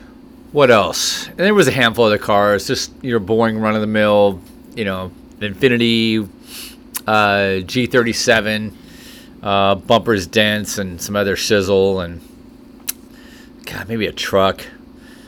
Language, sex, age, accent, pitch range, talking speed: English, male, 30-49, American, 110-145 Hz, 140 wpm